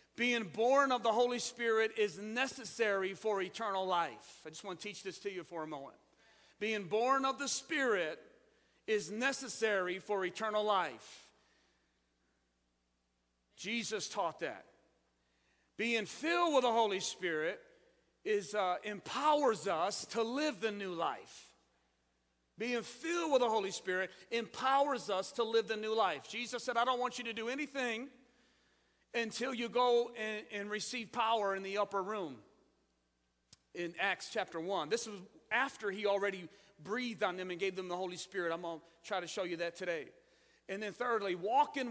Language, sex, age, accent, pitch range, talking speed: English, male, 40-59, American, 195-255 Hz, 160 wpm